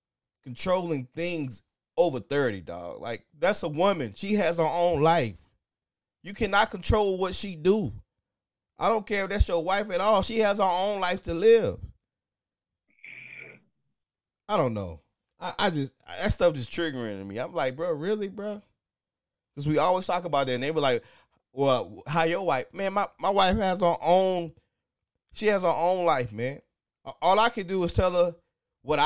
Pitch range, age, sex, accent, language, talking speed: 145-200 Hz, 20-39, male, American, English, 180 wpm